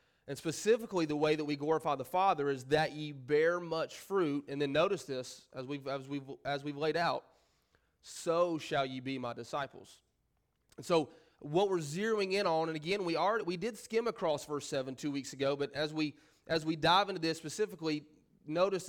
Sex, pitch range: male, 145-175 Hz